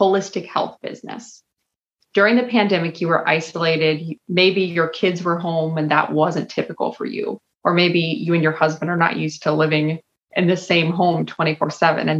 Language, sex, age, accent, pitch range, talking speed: English, female, 30-49, American, 160-190 Hz, 180 wpm